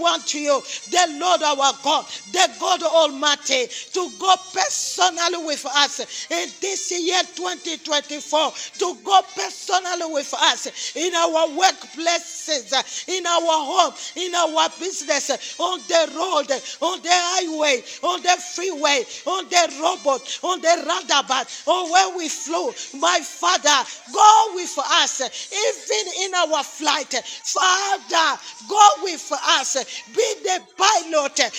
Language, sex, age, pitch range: English, female, 40-59, 305-370 Hz